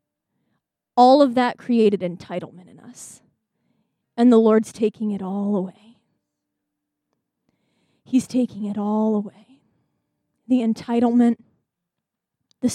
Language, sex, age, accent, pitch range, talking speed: English, female, 20-39, American, 225-270 Hz, 105 wpm